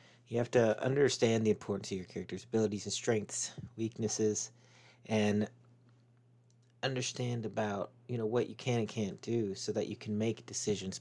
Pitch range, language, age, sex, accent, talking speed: 100-120 Hz, English, 30-49, male, American, 165 wpm